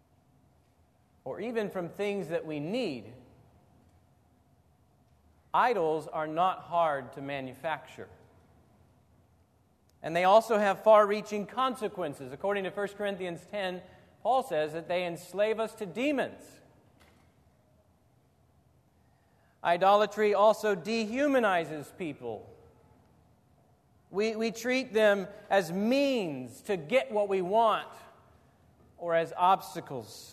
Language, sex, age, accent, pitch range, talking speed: English, male, 40-59, American, 135-205 Hz, 100 wpm